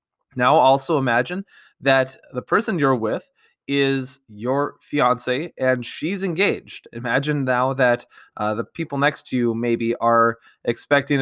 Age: 20-39